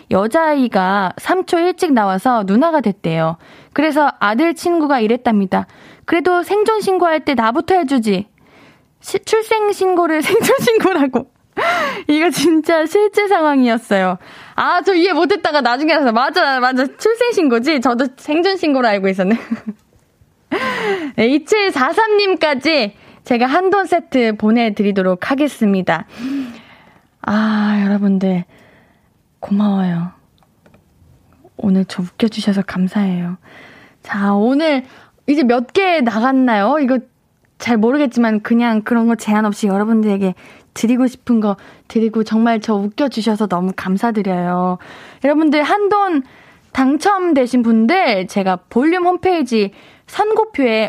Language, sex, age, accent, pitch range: Korean, female, 20-39, native, 210-320 Hz